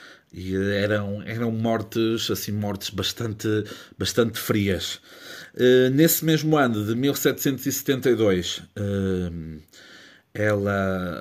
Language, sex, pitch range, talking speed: Portuguese, male, 100-120 Hz, 80 wpm